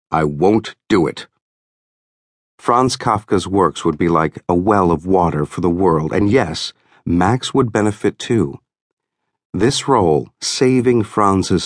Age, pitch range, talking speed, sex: 50-69, 85-110 Hz, 140 wpm, male